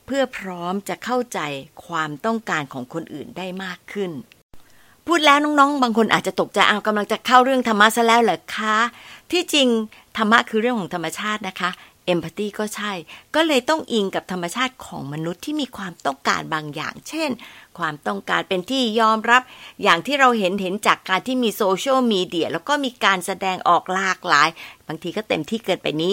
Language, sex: Thai, female